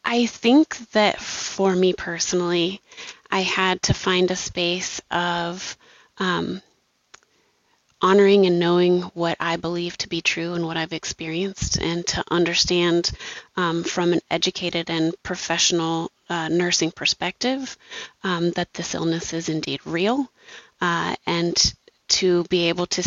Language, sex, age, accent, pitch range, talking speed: English, female, 30-49, American, 170-185 Hz, 135 wpm